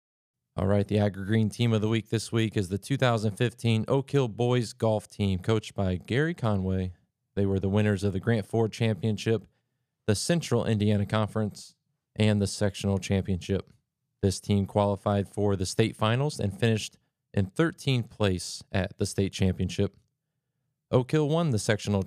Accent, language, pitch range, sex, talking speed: American, English, 100-125 Hz, male, 165 wpm